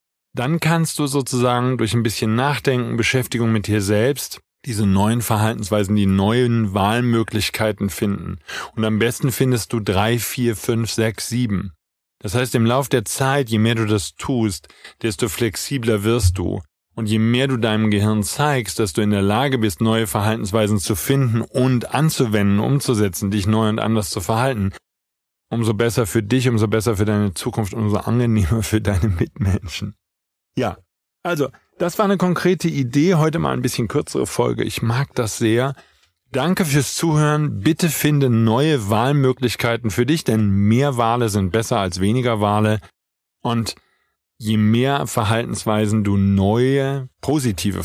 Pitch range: 105-130 Hz